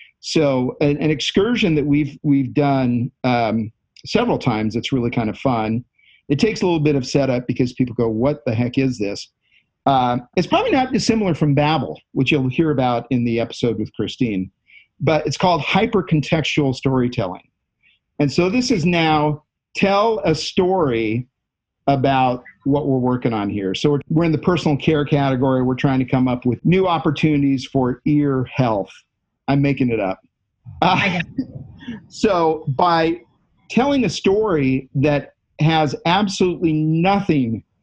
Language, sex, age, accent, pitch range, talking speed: English, male, 50-69, American, 125-155 Hz, 155 wpm